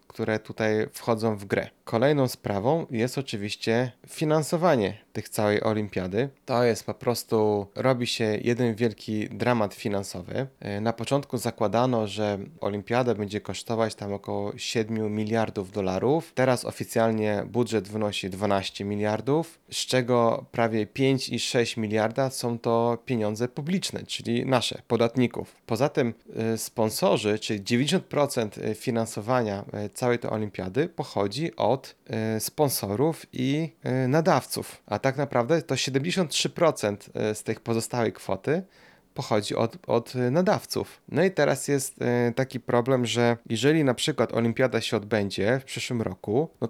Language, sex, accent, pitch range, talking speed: Polish, male, native, 110-130 Hz, 125 wpm